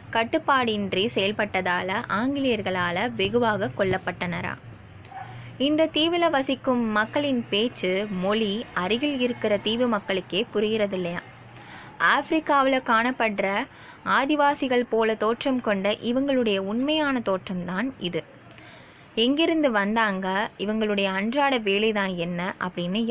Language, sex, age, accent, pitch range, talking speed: Tamil, female, 20-39, native, 200-260 Hz, 90 wpm